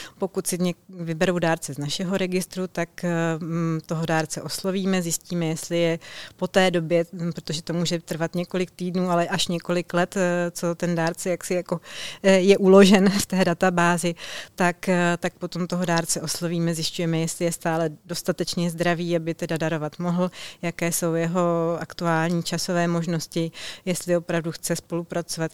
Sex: female